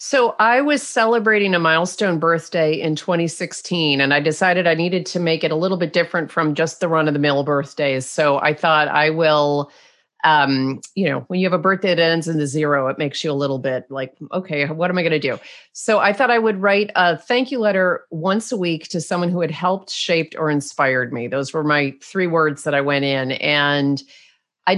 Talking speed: 225 wpm